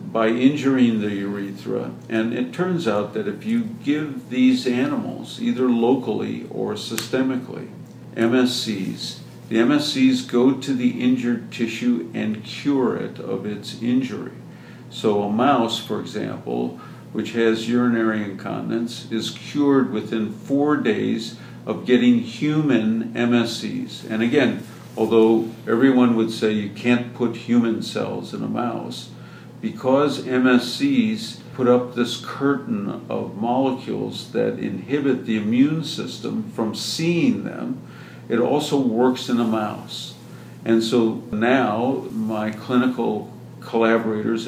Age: 50-69